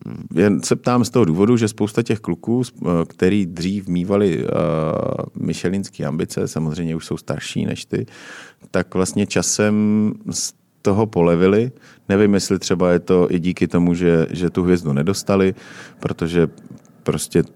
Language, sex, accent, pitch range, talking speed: Czech, male, native, 85-100 Hz, 145 wpm